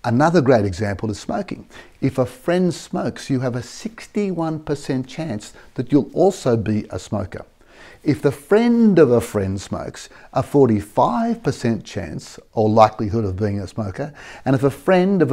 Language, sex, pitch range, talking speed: English, male, 110-145 Hz, 160 wpm